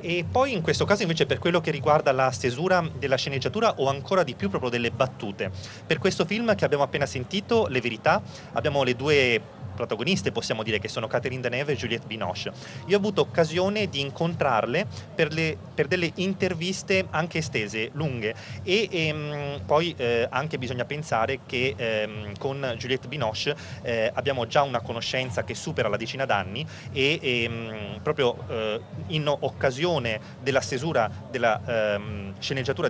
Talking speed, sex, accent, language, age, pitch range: 165 wpm, male, native, Italian, 30-49, 125-175 Hz